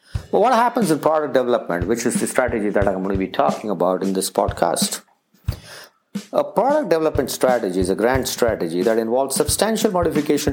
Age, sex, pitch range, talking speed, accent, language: 50-69, male, 110-155 Hz, 175 wpm, Indian, English